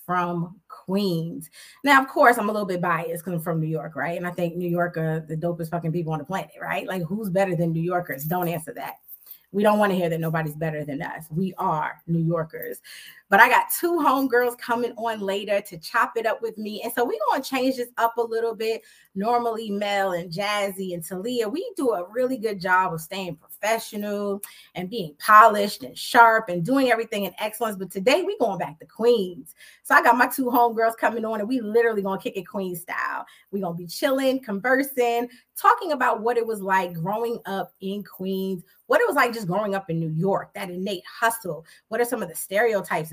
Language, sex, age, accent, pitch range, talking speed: English, female, 20-39, American, 180-235 Hz, 225 wpm